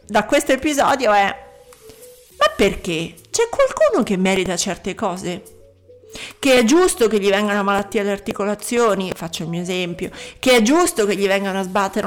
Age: 50-69